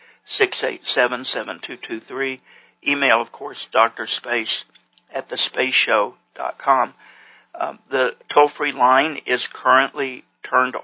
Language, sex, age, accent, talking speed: English, male, 60-79, American, 110 wpm